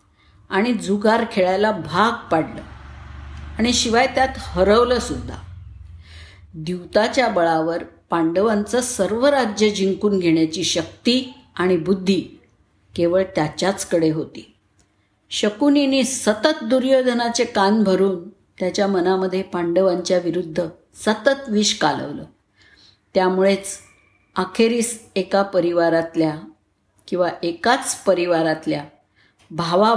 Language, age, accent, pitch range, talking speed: Marathi, 50-69, native, 170-235 Hz, 85 wpm